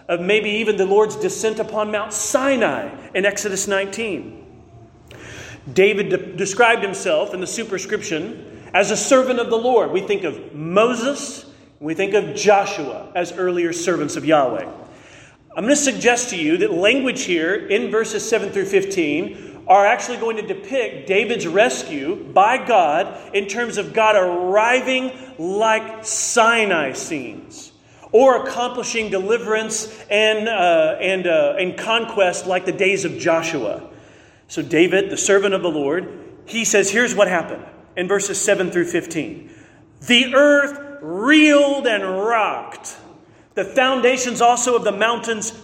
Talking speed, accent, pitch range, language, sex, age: 145 wpm, American, 195-255 Hz, English, male, 40-59